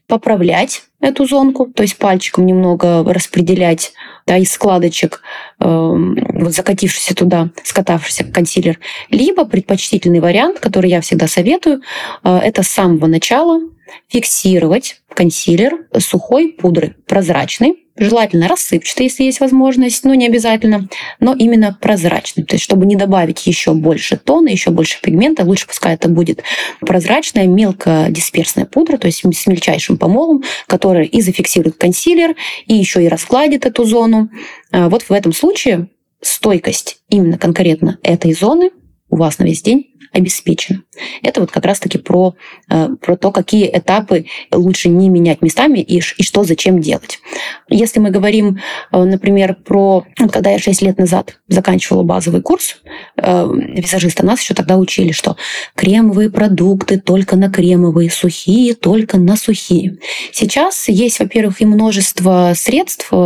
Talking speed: 135 wpm